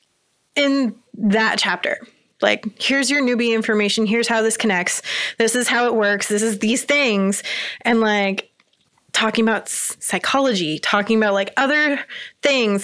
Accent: American